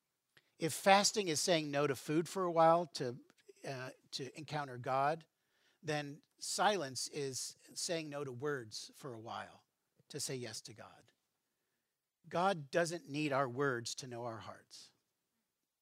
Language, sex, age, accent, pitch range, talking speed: English, male, 50-69, American, 130-165 Hz, 150 wpm